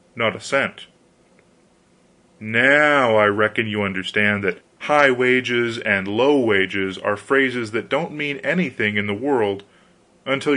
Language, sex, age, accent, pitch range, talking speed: English, male, 30-49, American, 120-180 Hz, 135 wpm